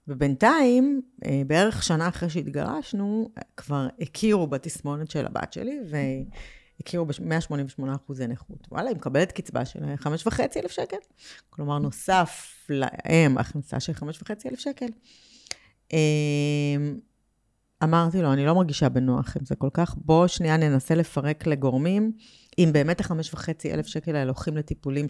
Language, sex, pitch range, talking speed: Hebrew, female, 145-185 Hz, 130 wpm